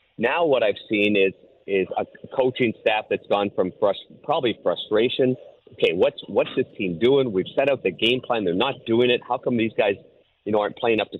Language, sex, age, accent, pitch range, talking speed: English, male, 50-69, American, 105-140 Hz, 220 wpm